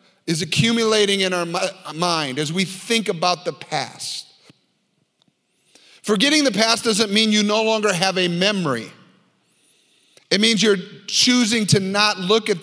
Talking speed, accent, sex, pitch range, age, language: 145 wpm, American, male, 170-225 Hz, 40-59, English